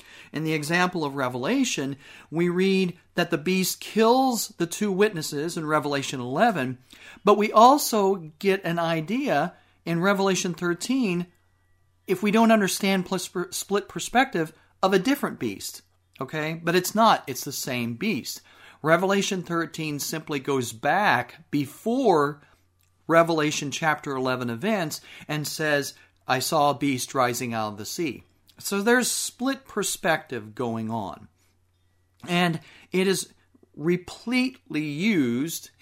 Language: English